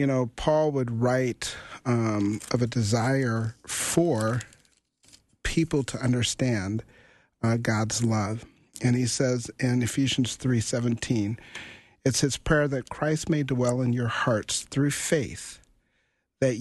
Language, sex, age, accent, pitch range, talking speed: English, male, 40-59, American, 115-140 Hz, 130 wpm